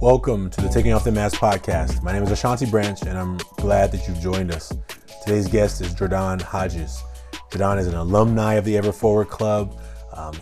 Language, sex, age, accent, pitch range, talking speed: English, male, 30-49, American, 85-105 Hz, 200 wpm